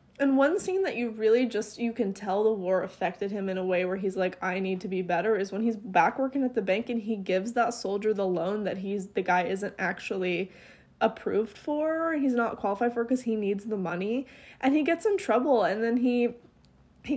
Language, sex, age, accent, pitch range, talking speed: English, female, 10-29, American, 190-235 Hz, 230 wpm